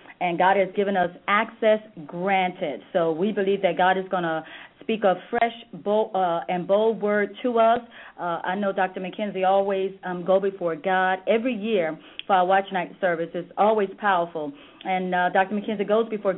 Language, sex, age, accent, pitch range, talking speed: English, female, 40-59, American, 185-215 Hz, 185 wpm